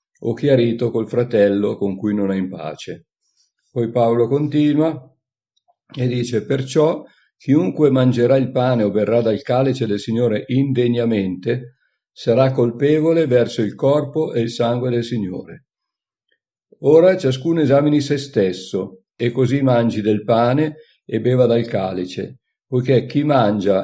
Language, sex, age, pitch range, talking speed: Italian, male, 50-69, 110-135 Hz, 135 wpm